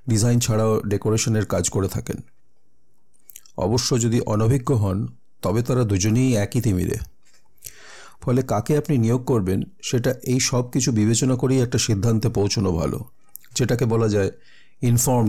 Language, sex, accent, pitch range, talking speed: Bengali, male, native, 100-125 Hz, 45 wpm